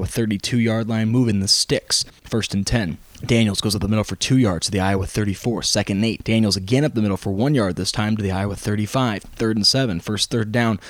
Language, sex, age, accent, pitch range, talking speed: English, male, 20-39, American, 105-120 Hz, 240 wpm